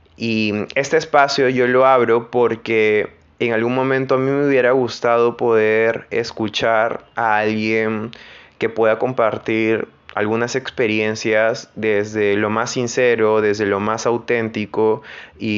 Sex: male